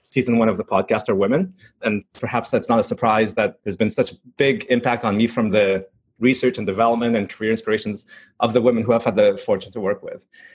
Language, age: English, 30-49